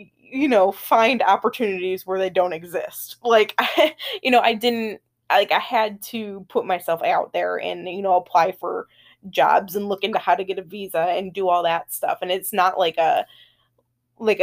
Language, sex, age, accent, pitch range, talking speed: English, female, 20-39, American, 180-230 Hz, 190 wpm